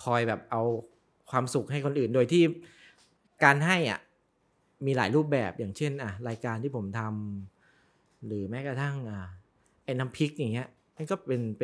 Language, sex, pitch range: Thai, male, 120-155 Hz